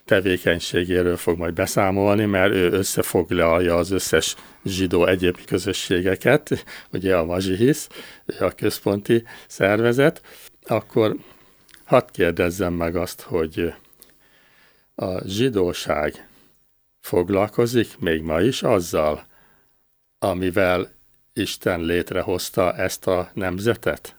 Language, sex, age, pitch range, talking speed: Hungarian, male, 60-79, 85-100 Hz, 95 wpm